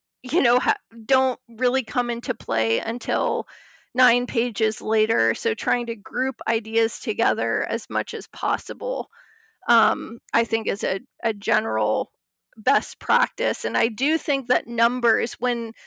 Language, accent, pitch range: English, American, 225-255 Hz